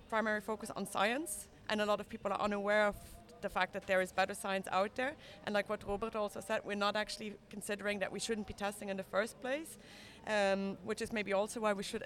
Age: 30-49